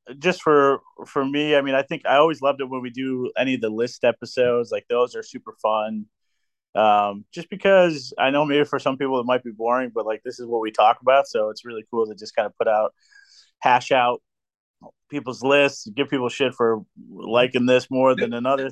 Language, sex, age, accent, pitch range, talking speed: English, male, 30-49, American, 110-130 Hz, 220 wpm